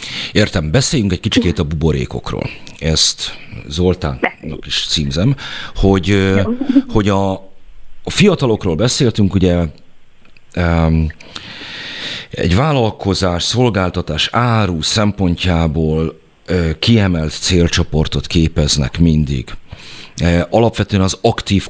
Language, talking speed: Hungarian, 80 wpm